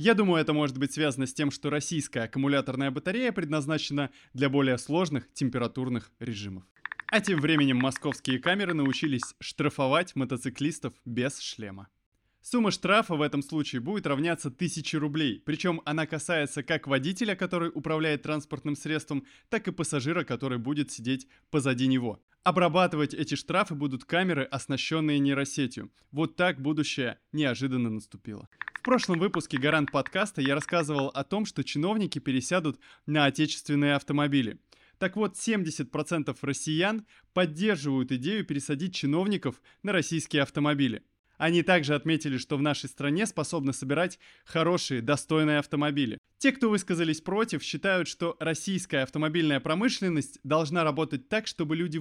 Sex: male